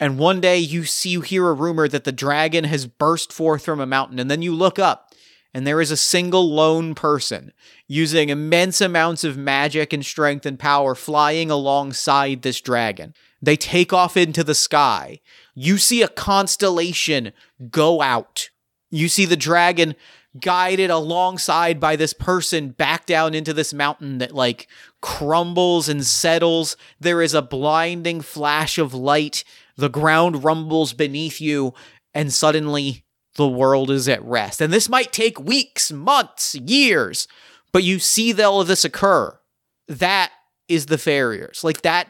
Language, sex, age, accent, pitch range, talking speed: English, male, 30-49, American, 145-170 Hz, 160 wpm